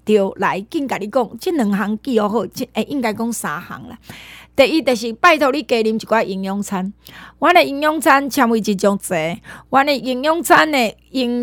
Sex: female